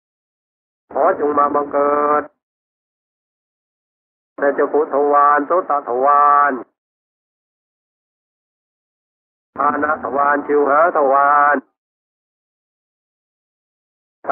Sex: male